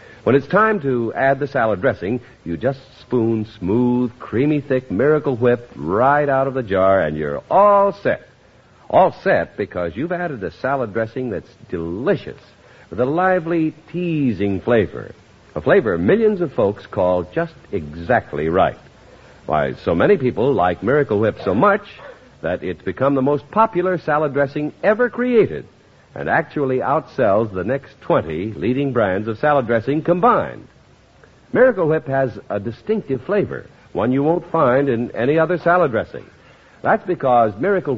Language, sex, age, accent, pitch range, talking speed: English, male, 60-79, American, 115-160 Hz, 155 wpm